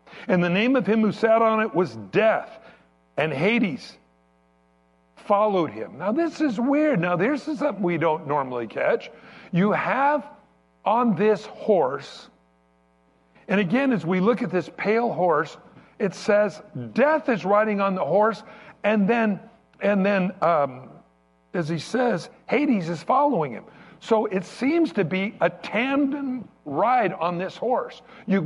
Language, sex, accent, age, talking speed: English, male, American, 60-79, 155 wpm